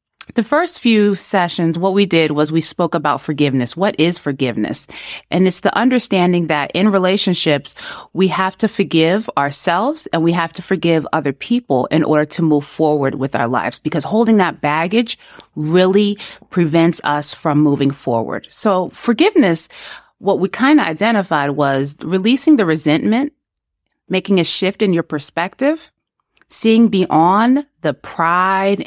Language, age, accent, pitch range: English, 30-49, American, 160-215 Hz